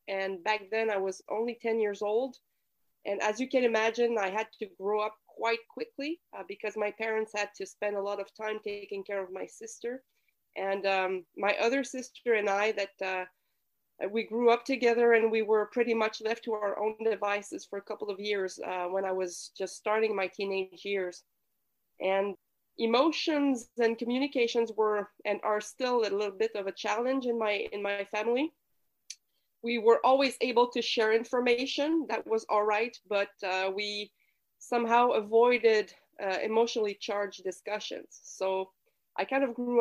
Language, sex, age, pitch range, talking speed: English, female, 30-49, 200-235 Hz, 180 wpm